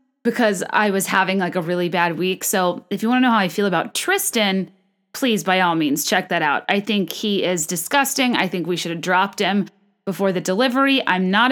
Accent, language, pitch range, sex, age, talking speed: American, English, 195-260 Hz, female, 30-49, 230 wpm